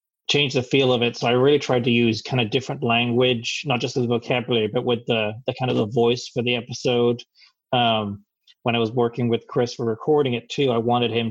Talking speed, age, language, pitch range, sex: 235 wpm, 30-49, English, 110-125 Hz, male